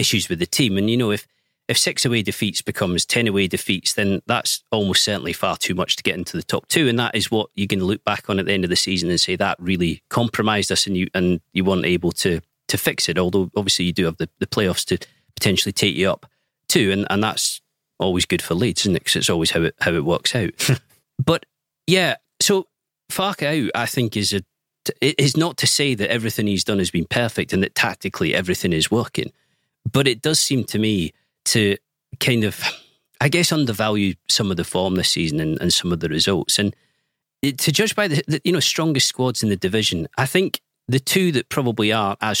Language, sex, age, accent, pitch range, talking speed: English, male, 40-59, British, 95-135 Hz, 235 wpm